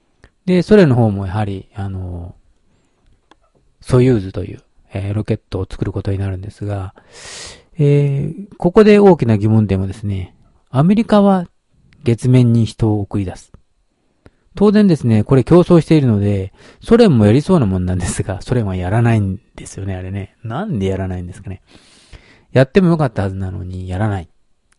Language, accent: Japanese, native